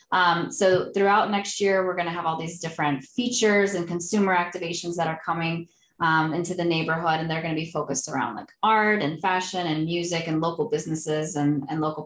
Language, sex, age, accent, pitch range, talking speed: English, female, 20-39, American, 160-185 Hz, 210 wpm